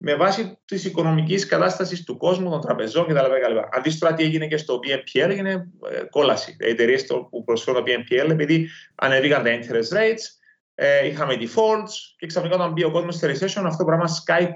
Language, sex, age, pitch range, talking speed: Greek, male, 30-49, 135-190 Hz, 185 wpm